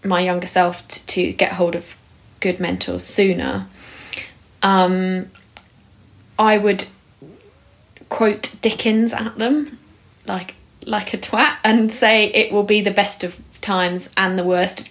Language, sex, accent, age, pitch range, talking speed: English, female, British, 20-39, 175-210 Hz, 135 wpm